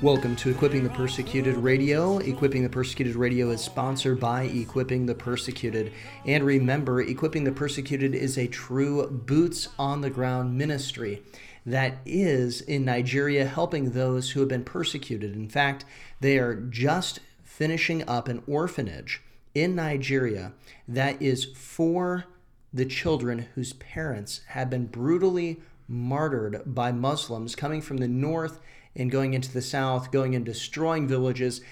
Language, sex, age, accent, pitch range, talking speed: English, male, 40-59, American, 125-150 Hz, 140 wpm